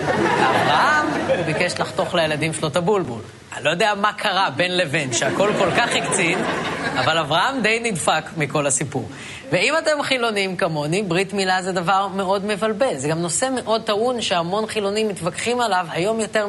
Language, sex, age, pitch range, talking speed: Hebrew, female, 30-49, 155-210 Hz, 165 wpm